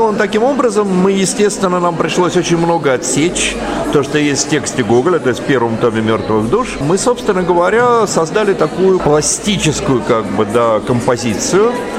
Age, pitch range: 40-59, 135-195 Hz